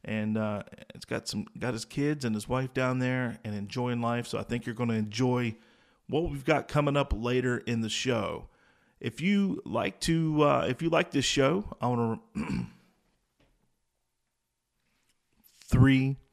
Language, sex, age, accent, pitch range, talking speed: English, male, 40-59, American, 115-130 Hz, 170 wpm